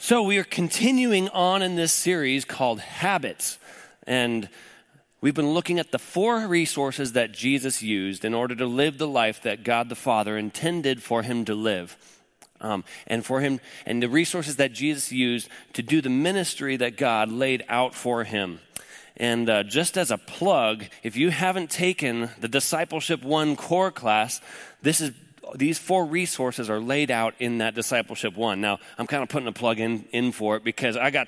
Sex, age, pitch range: male, 30-49, 115-150 Hz